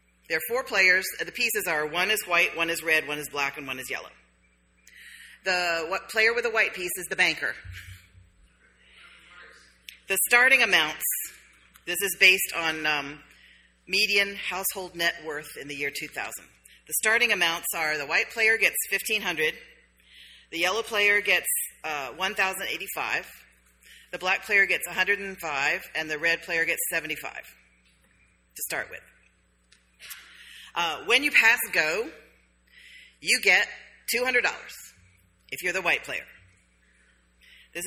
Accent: American